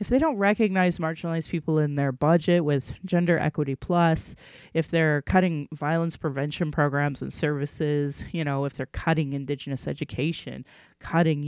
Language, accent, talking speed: English, American, 150 wpm